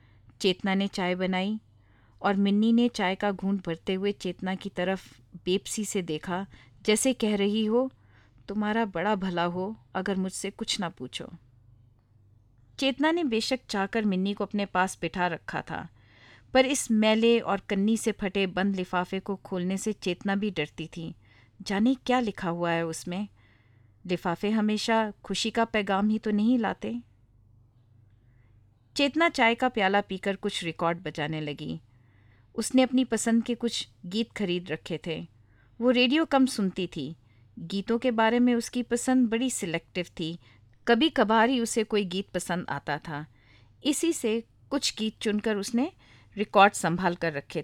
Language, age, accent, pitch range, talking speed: Hindi, 40-59, native, 165-225 Hz, 155 wpm